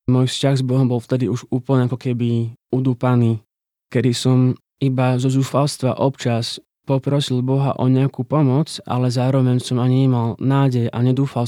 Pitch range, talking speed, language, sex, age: 115-130 Hz, 155 wpm, Slovak, male, 20-39